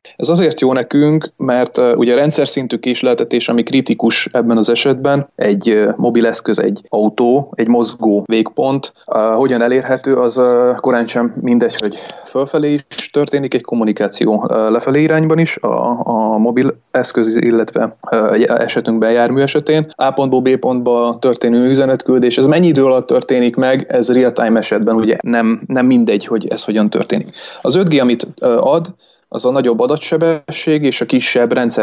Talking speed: 160 wpm